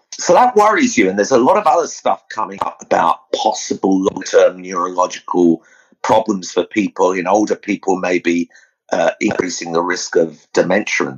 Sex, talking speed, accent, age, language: male, 165 wpm, British, 50-69, English